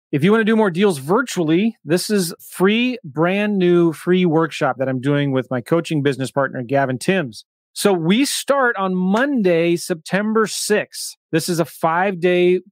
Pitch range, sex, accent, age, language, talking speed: 145-180 Hz, male, American, 30-49, English, 170 wpm